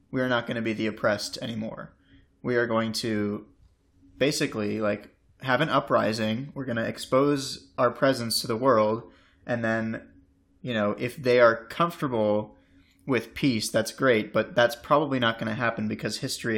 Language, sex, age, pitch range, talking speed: English, male, 20-39, 110-130 Hz, 175 wpm